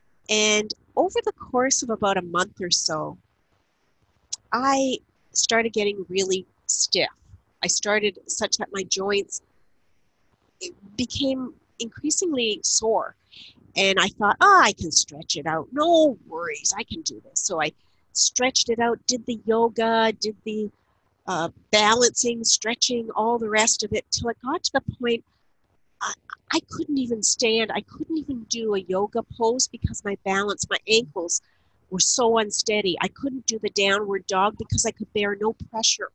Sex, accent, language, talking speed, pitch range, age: female, American, English, 155 wpm, 195-235 Hz, 50-69